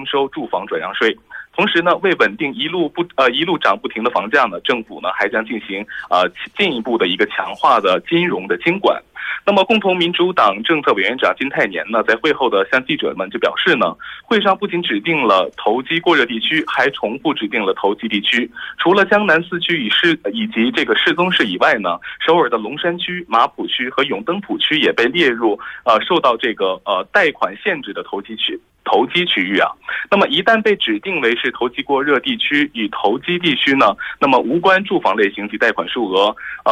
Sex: male